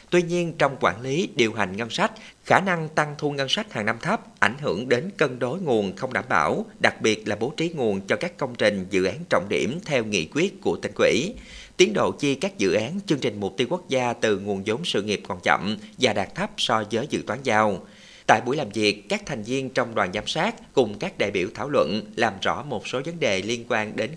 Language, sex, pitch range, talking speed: Vietnamese, male, 115-170 Hz, 250 wpm